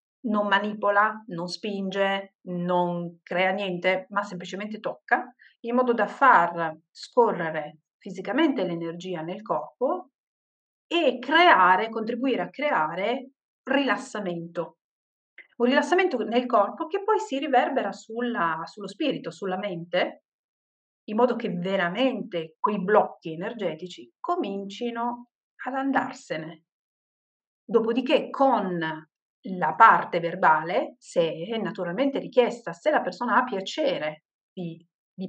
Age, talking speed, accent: 40-59, 105 wpm, native